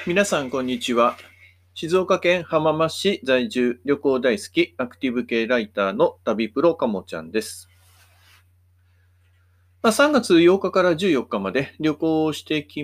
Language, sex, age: Japanese, male, 40-59